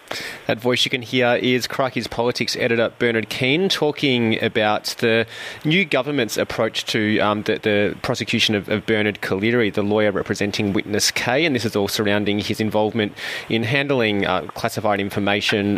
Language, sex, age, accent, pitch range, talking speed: English, male, 30-49, Australian, 105-120 Hz, 165 wpm